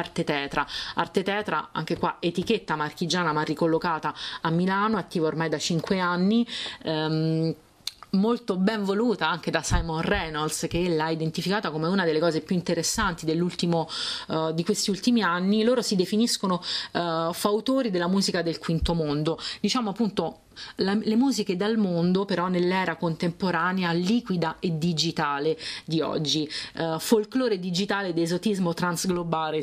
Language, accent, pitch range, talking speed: Italian, native, 160-195 Hz, 145 wpm